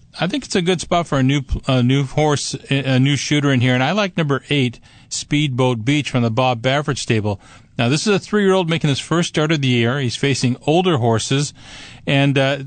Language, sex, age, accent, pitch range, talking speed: English, male, 40-59, American, 125-150 Hz, 225 wpm